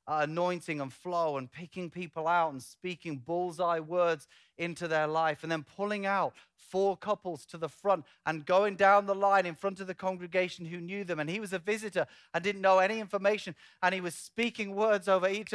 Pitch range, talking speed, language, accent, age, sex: 155-195 Hz, 205 wpm, English, British, 30-49, male